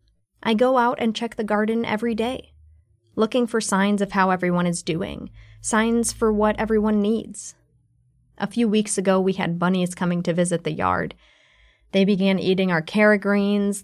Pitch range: 180-215 Hz